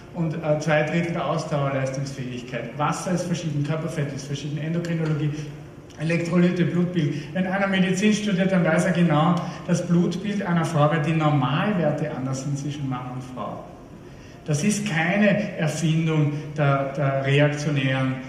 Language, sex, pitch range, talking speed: German, male, 150-190 Hz, 140 wpm